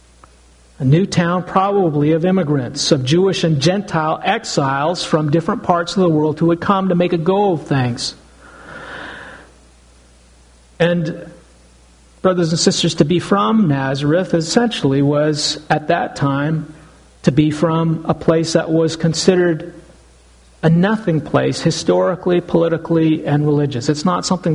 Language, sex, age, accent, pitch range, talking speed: English, male, 50-69, American, 145-180 Hz, 140 wpm